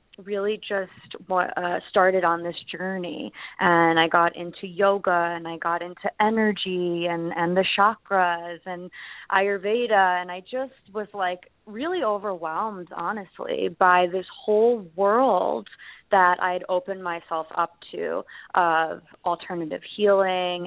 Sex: female